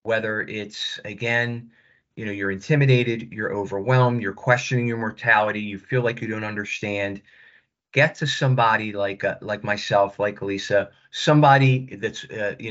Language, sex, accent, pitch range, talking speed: English, male, American, 105-130 Hz, 150 wpm